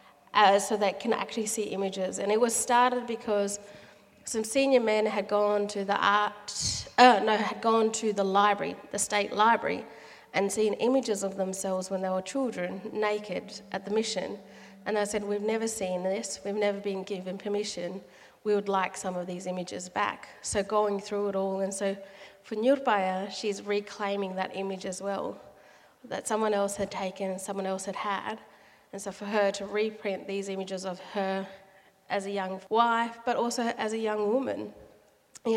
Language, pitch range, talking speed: English, 195-215 Hz, 180 wpm